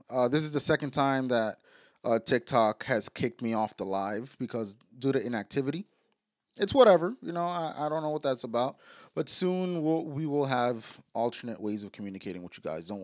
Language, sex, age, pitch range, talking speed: English, male, 20-39, 110-155 Hz, 200 wpm